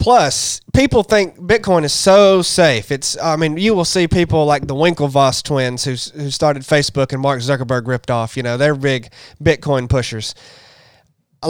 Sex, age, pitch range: male, 20-39, 135-175 Hz